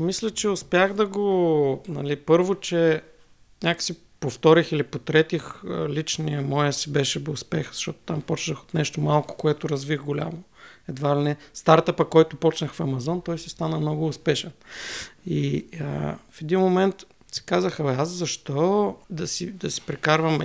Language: Bulgarian